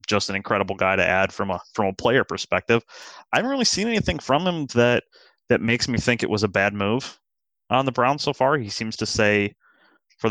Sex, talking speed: male, 225 wpm